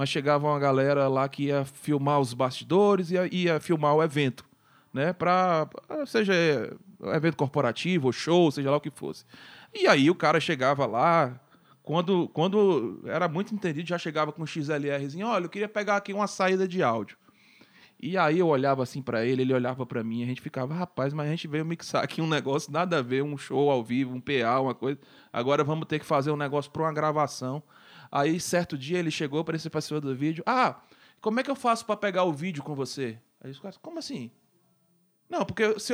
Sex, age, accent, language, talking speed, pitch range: male, 20-39, Brazilian, Portuguese, 215 wpm, 135-185 Hz